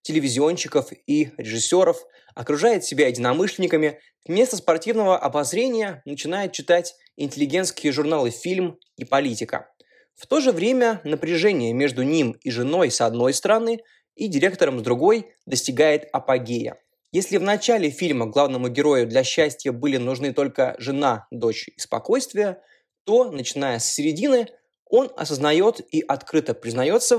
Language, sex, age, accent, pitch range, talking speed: Russian, male, 20-39, native, 135-225 Hz, 130 wpm